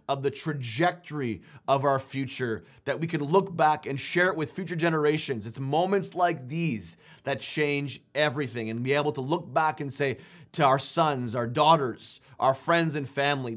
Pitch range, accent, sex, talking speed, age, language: 130-160 Hz, American, male, 180 wpm, 20-39, English